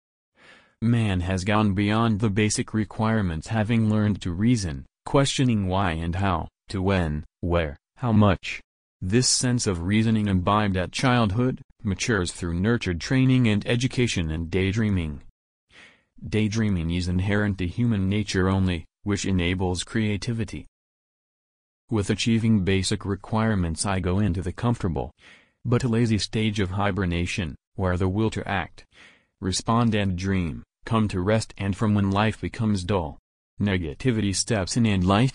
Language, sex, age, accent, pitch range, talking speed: English, male, 40-59, American, 95-115 Hz, 140 wpm